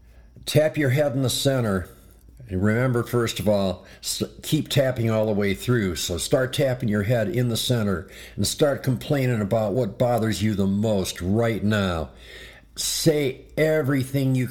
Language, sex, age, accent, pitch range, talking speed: English, male, 60-79, American, 100-125 Hz, 160 wpm